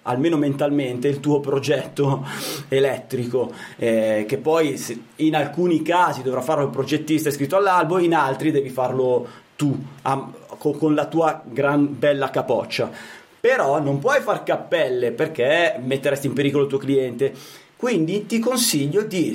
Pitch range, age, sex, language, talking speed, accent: 130-175 Hz, 30-49, male, Italian, 140 wpm, native